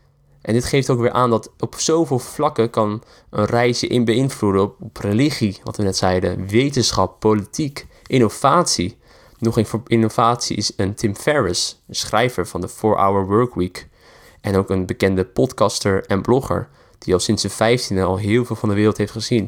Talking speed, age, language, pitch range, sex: 180 wpm, 20-39, Dutch, 95-120 Hz, male